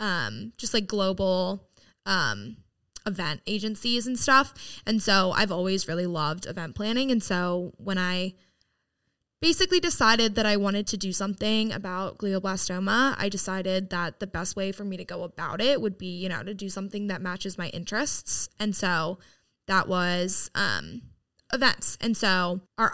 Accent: American